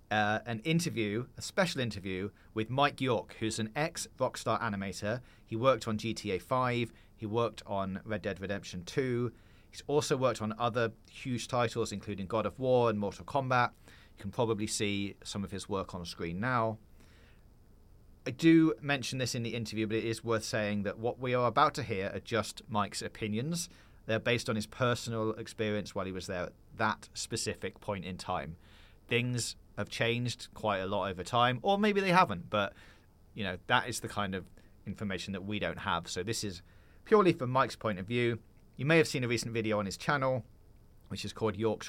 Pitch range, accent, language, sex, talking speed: 100-120 Hz, British, English, male, 195 wpm